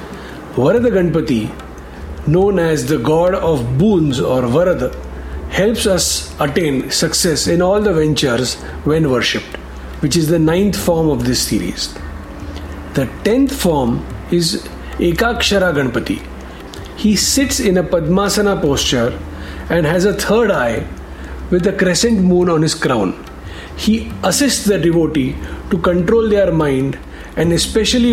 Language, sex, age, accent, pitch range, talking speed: Hindi, male, 50-69, native, 135-195 Hz, 130 wpm